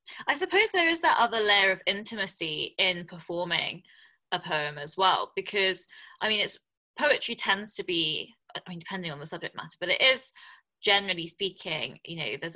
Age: 20-39